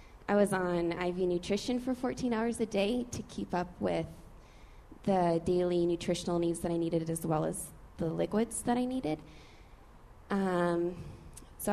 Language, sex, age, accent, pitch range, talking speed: English, female, 20-39, American, 170-200 Hz, 160 wpm